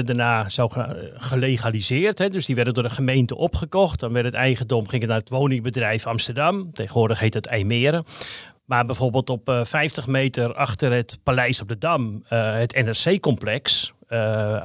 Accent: Dutch